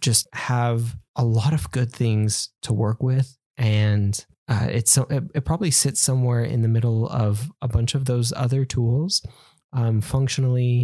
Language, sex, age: English, male, 20-39